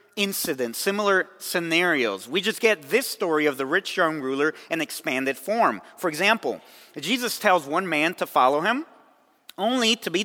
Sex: male